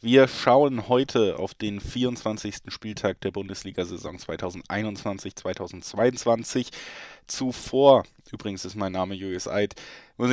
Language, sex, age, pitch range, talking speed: German, male, 20-39, 100-115 Hz, 105 wpm